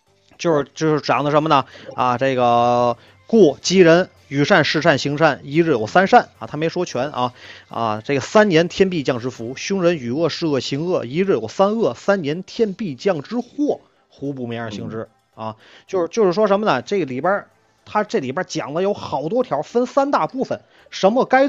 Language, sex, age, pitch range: Chinese, male, 30-49, 130-205 Hz